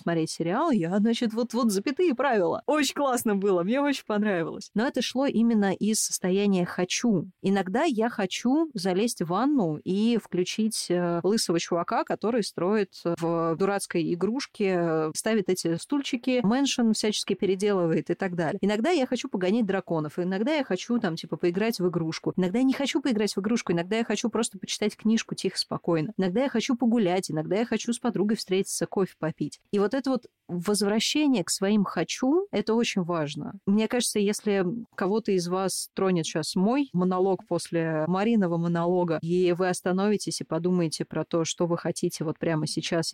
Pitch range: 170-225 Hz